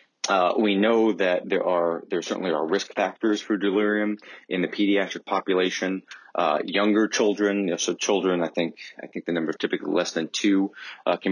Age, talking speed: 30-49, 185 wpm